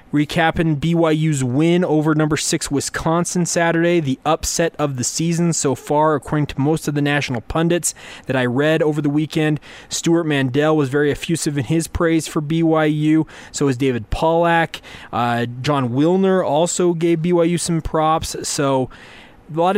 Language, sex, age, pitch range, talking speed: English, male, 20-39, 140-165 Hz, 160 wpm